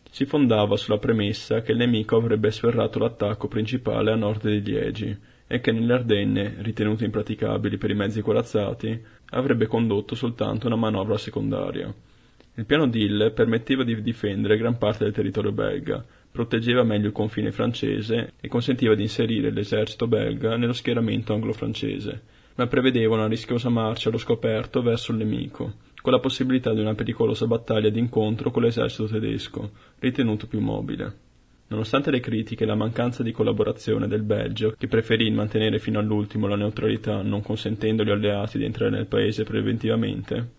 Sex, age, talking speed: male, 20-39, 155 wpm